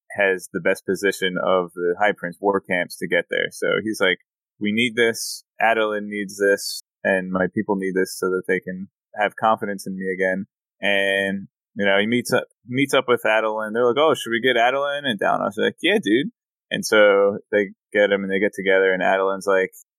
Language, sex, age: English, male, 20-39